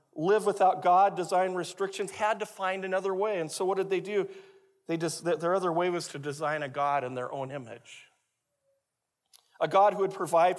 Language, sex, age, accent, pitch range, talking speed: English, male, 40-59, American, 155-220 Hz, 200 wpm